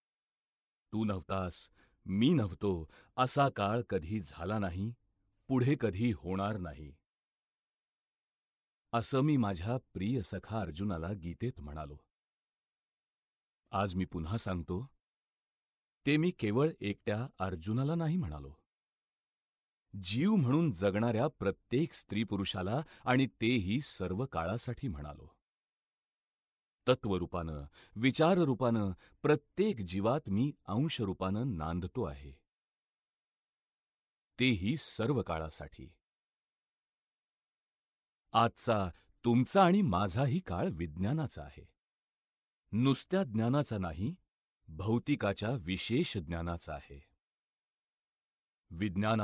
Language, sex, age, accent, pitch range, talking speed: Marathi, male, 40-59, native, 90-130 Hz, 65 wpm